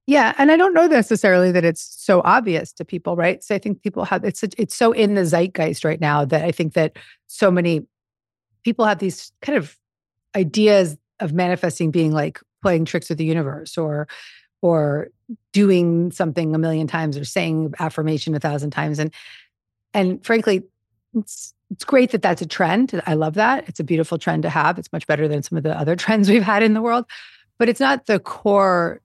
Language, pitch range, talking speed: English, 155-190 Hz, 200 wpm